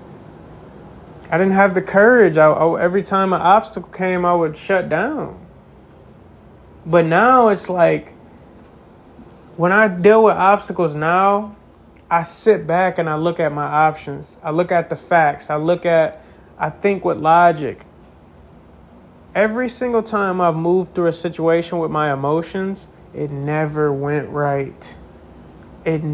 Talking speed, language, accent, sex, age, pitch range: 145 wpm, English, American, male, 30-49, 150-190 Hz